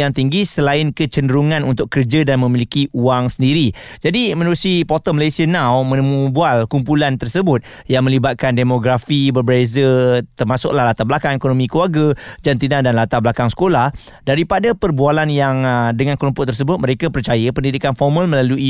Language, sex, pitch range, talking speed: Malay, male, 125-150 Hz, 140 wpm